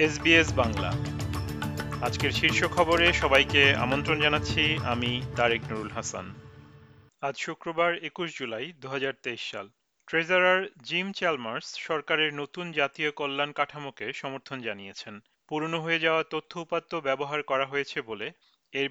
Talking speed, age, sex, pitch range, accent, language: 50 wpm, 40-59, male, 135-165 Hz, native, Bengali